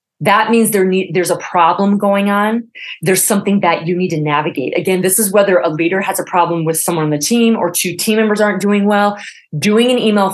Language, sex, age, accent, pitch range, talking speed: English, female, 30-49, American, 170-200 Hz, 220 wpm